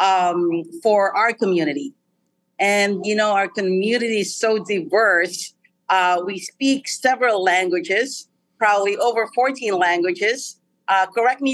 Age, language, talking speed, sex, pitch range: 40-59, English, 125 wpm, female, 190-230 Hz